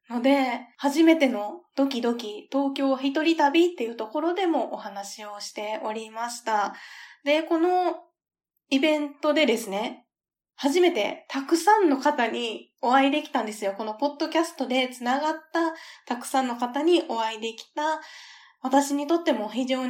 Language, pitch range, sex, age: Japanese, 210-295 Hz, female, 20-39